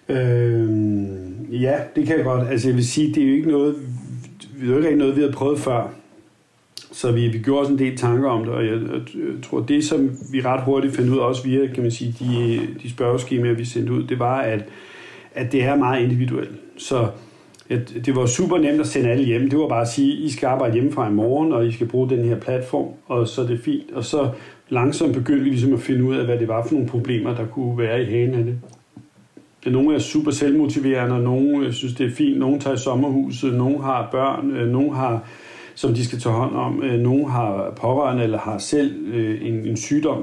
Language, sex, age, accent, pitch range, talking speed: Danish, male, 60-79, native, 120-140 Hz, 225 wpm